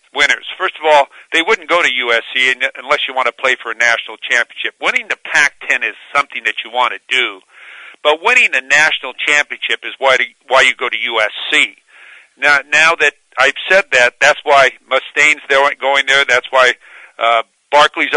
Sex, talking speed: male, 190 wpm